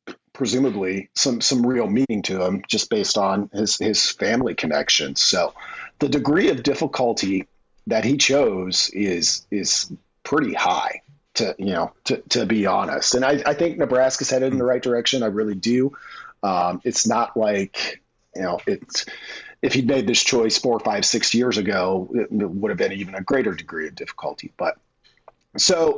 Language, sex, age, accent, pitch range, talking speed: English, male, 40-59, American, 105-135 Hz, 175 wpm